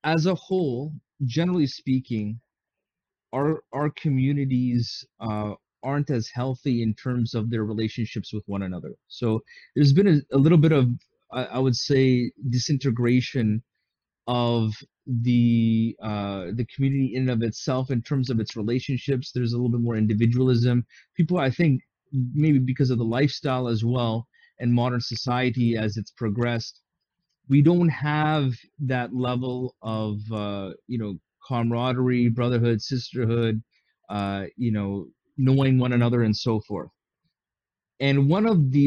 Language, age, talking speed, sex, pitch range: English, 30-49, 145 wpm, male, 115-140 Hz